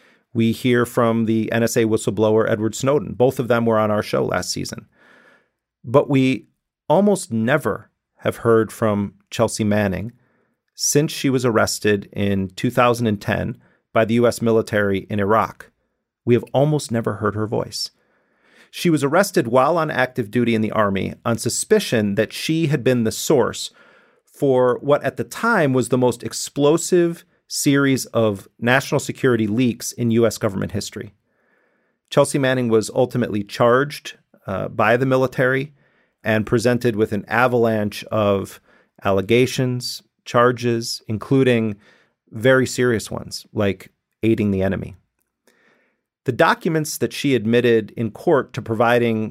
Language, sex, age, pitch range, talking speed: English, male, 40-59, 110-130 Hz, 140 wpm